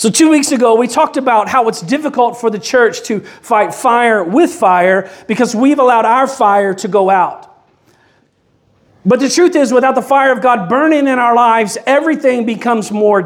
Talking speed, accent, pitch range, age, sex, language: 190 wpm, American, 200-255 Hz, 40-59, male, English